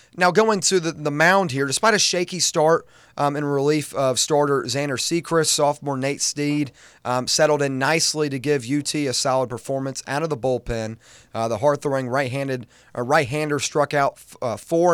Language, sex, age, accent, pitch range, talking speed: English, male, 30-49, American, 125-150 Hz, 185 wpm